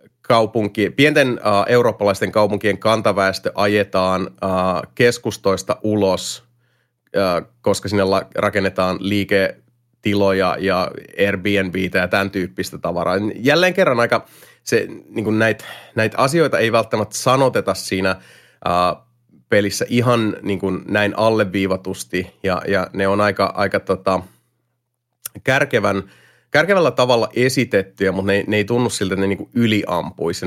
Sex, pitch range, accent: male, 95-115 Hz, native